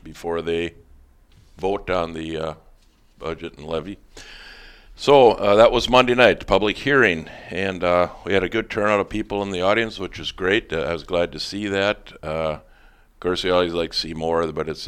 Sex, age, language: male, 50-69, English